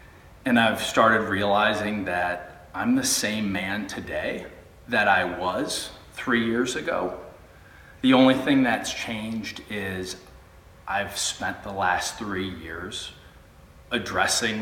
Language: English